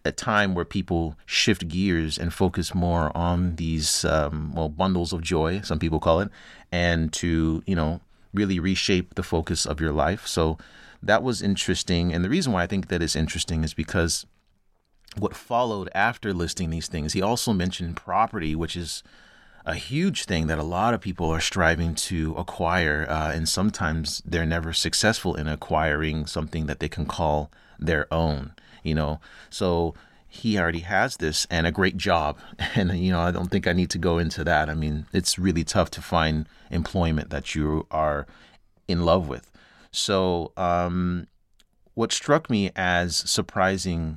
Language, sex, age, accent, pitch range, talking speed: English, male, 30-49, American, 80-95 Hz, 175 wpm